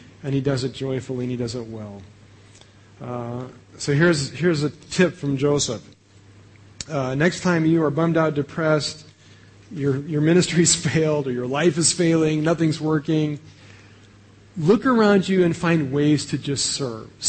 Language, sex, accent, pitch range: English, male, American, 110-165 Hz